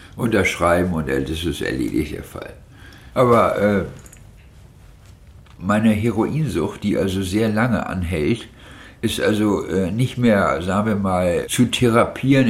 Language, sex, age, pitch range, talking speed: German, male, 60-79, 90-110 Hz, 125 wpm